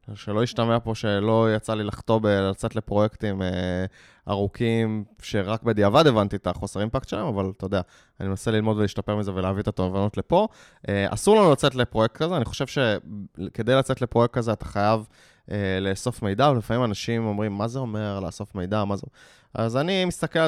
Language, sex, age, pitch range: Hebrew, male, 20-39, 100-130 Hz